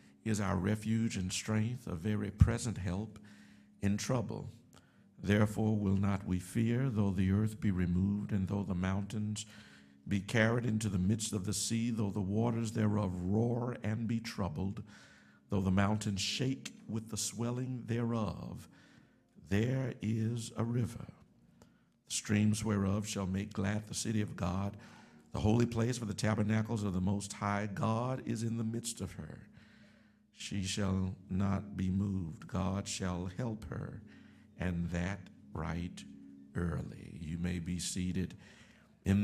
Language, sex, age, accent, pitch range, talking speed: English, male, 60-79, American, 95-110 Hz, 150 wpm